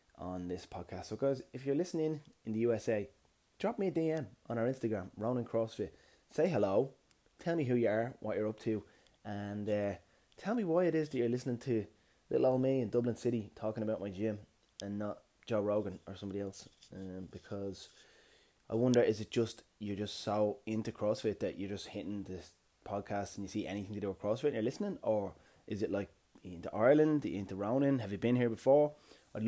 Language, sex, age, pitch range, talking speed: English, male, 20-39, 100-115 Hz, 210 wpm